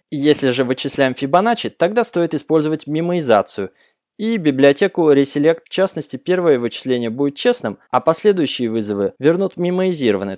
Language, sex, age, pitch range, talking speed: Russian, male, 20-39, 125-175 Hz, 125 wpm